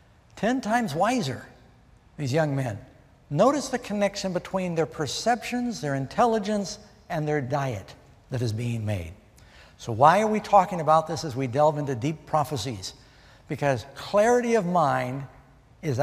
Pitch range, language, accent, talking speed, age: 130-190 Hz, English, American, 145 wpm, 60-79